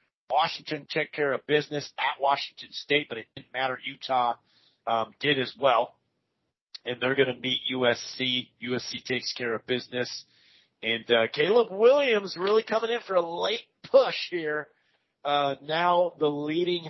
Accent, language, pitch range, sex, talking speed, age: American, English, 125-170 Hz, male, 155 wpm, 40-59